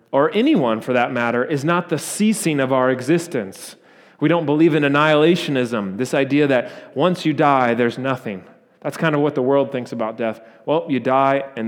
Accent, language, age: American, English, 30-49